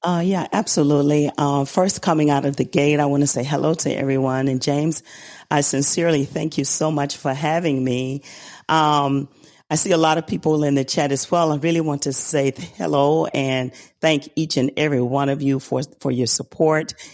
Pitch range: 130-155 Hz